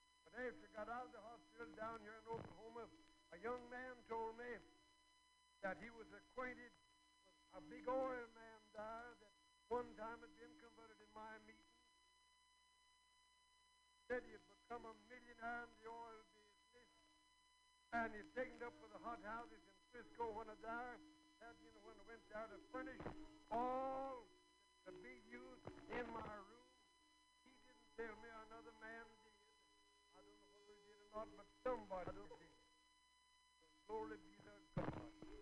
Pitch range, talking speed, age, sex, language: 220-335 Hz, 130 wpm, 60-79, male, English